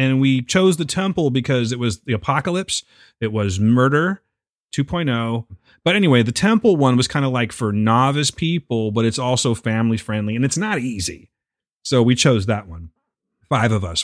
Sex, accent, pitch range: male, American, 105-135 Hz